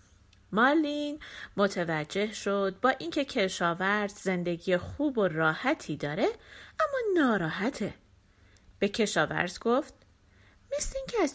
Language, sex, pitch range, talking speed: Persian, female, 185-295 Hz, 100 wpm